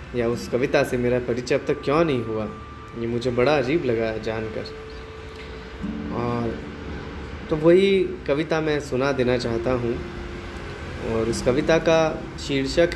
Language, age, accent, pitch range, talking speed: Hindi, 20-39, native, 85-130 Hz, 150 wpm